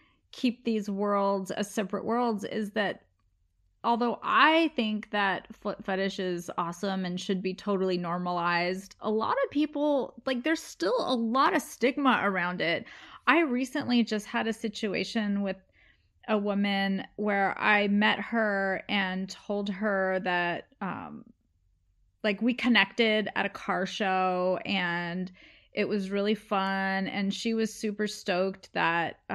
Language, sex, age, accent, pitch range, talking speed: English, female, 30-49, American, 185-235 Hz, 145 wpm